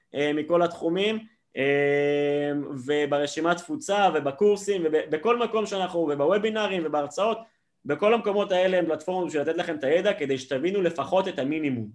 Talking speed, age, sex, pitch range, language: 130 wpm, 20-39, male, 145-185 Hz, Hebrew